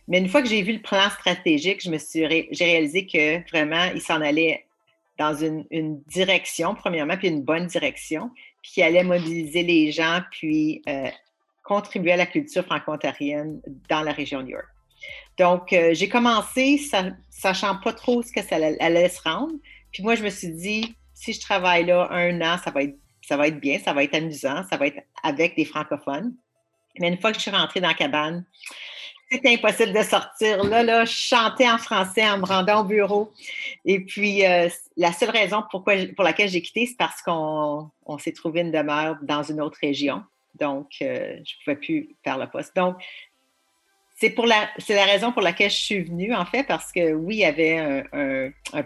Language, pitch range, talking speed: French, 160-220 Hz, 200 wpm